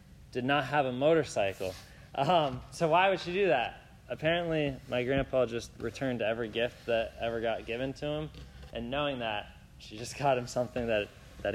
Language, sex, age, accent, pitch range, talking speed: English, male, 20-39, American, 100-130 Hz, 180 wpm